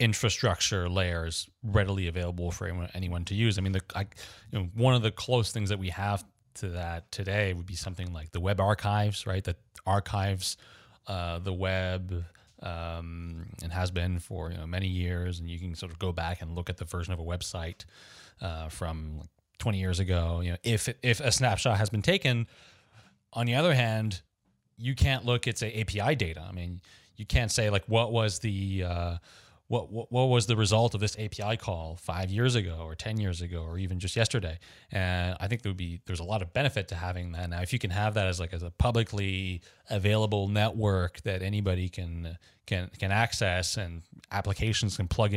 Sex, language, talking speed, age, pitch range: male, English, 205 wpm, 30-49, 90-110 Hz